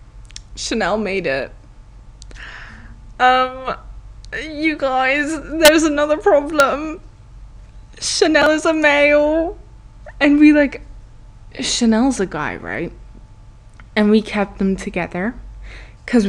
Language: English